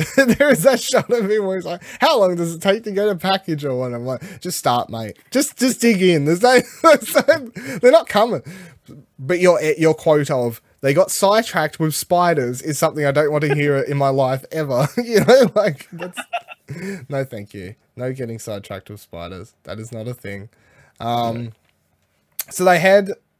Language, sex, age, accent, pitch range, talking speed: English, male, 20-39, Australian, 115-180 Hz, 200 wpm